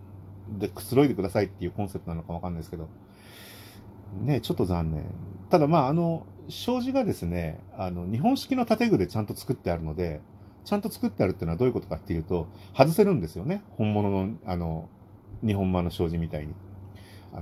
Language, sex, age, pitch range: Japanese, male, 40-59, 90-120 Hz